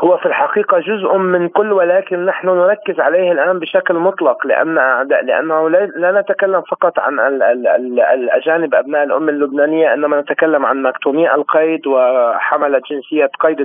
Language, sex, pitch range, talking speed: Arabic, male, 135-180 Hz, 140 wpm